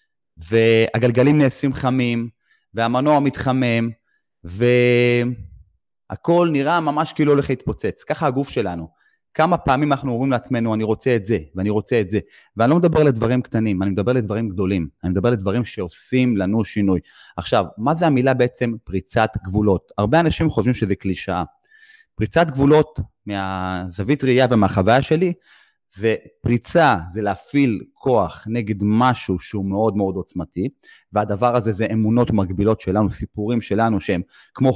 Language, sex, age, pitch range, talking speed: Hebrew, male, 30-49, 105-140 Hz, 140 wpm